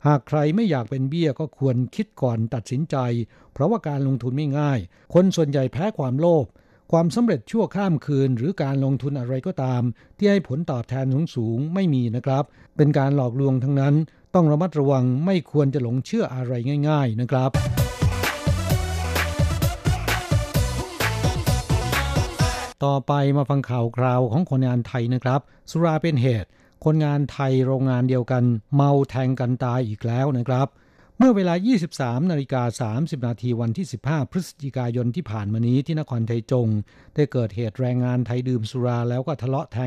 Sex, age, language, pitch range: male, 60-79, Thai, 125-145 Hz